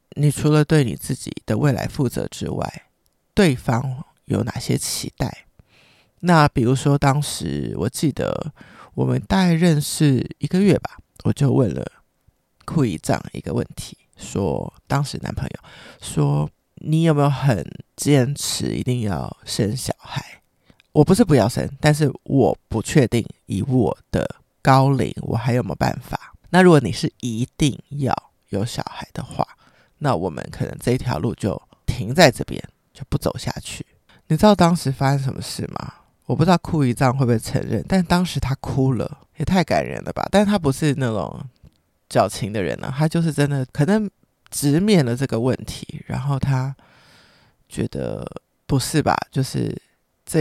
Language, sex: Chinese, male